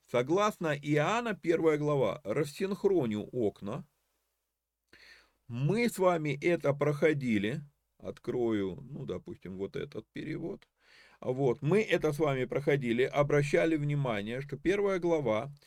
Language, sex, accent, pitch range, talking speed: Russian, male, native, 100-145 Hz, 105 wpm